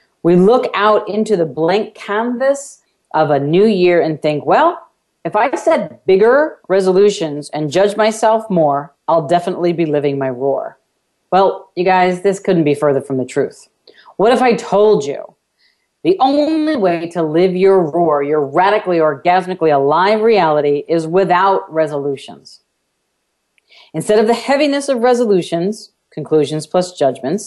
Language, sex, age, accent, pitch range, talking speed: English, female, 40-59, American, 150-210 Hz, 150 wpm